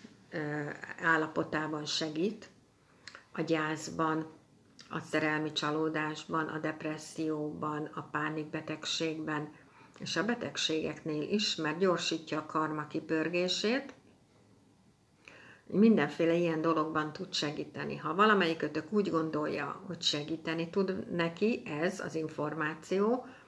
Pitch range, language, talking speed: 155-180 Hz, Hungarian, 95 wpm